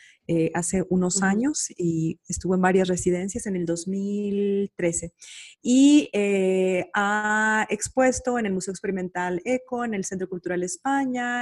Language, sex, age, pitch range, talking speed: Spanish, female, 30-49, 180-220 Hz, 135 wpm